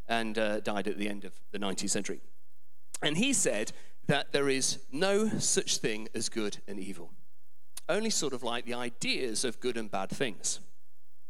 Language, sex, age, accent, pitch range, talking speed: English, male, 40-59, British, 115-175 Hz, 180 wpm